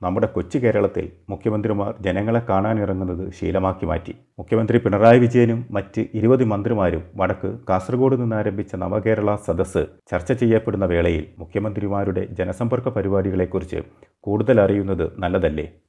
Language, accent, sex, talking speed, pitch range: Malayalam, native, male, 105 wpm, 95-120 Hz